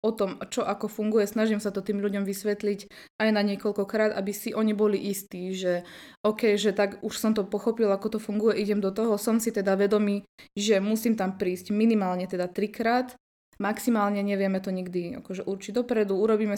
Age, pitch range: 20-39, 195-215 Hz